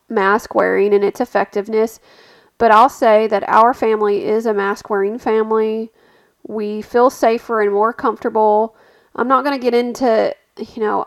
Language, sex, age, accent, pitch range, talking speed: English, female, 30-49, American, 215-270 Hz, 165 wpm